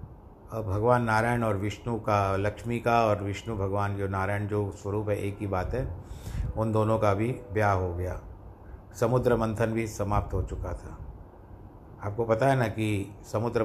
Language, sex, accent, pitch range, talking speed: Hindi, male, native, 95-110 Hz, 175 wpm